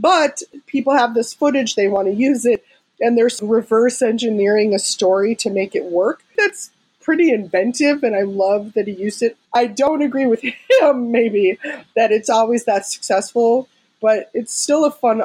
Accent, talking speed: American, 175 wpm